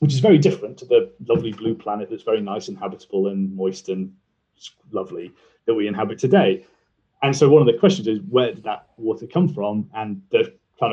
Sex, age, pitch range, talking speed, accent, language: male, 30-49, 115-165 Hz, 210 wpm, British, English